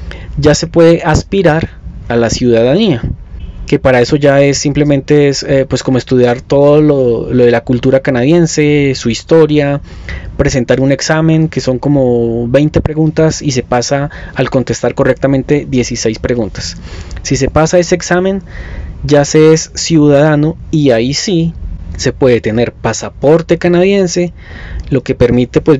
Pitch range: 120-150 Hz